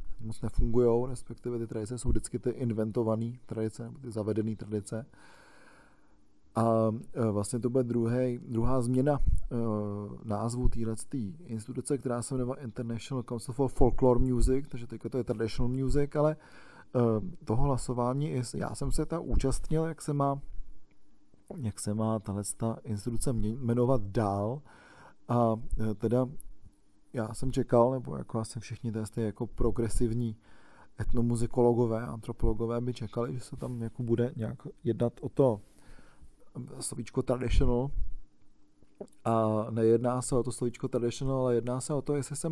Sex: male